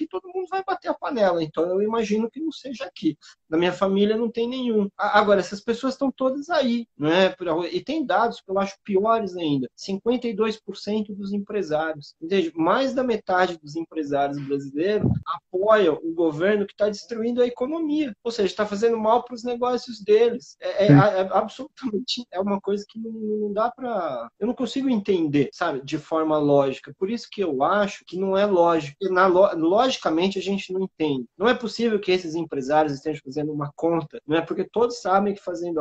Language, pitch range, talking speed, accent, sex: Portuguese, 160-230 Hz, 200 wpm, Brazilian, male